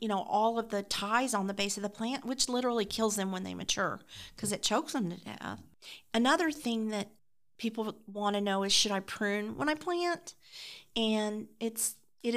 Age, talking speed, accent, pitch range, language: 40-59, 205 wpm, American, 205-245 Hz, English